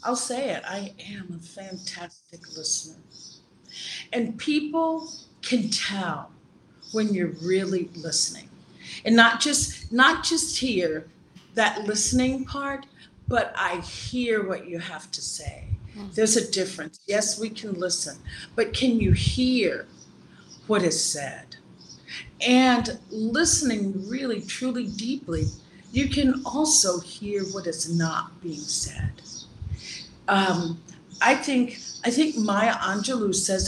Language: English